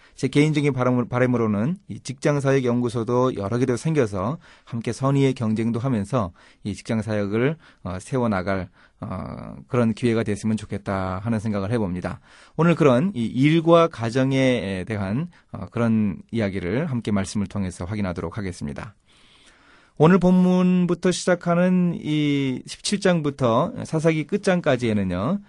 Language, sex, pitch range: Korean, male, 110-150 Hz